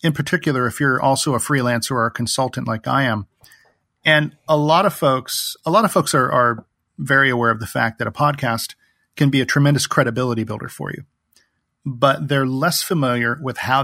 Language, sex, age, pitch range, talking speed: English, male, 40-59, 120-145 Hz, 200 wpm